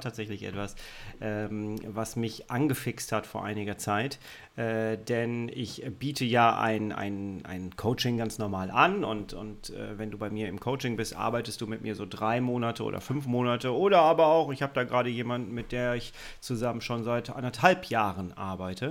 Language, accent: German, German